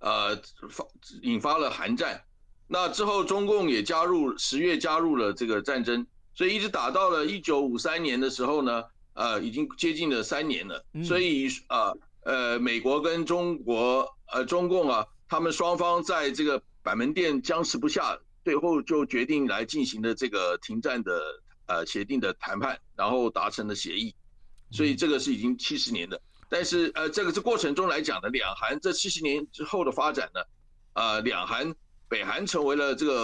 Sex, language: male, Chinese